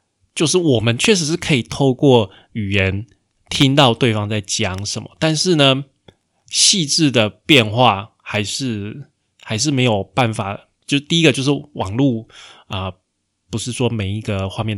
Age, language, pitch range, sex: 20-39, Chinese, 100-130 Hz, male